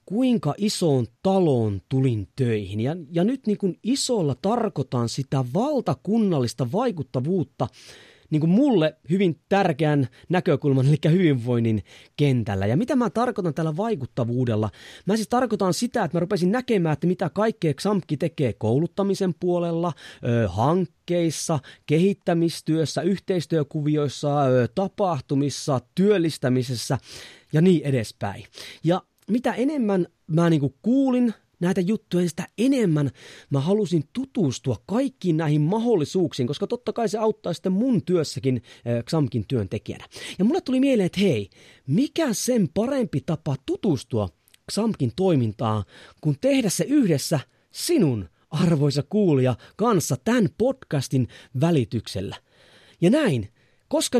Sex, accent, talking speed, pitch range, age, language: male, native, 115 wpm, 135-205 Hz, 30-49, Finnish